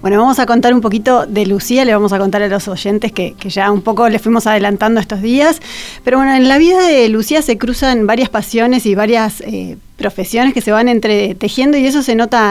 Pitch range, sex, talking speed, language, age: 205-245 Hz, female, 230 wpm, Spanish, 30-49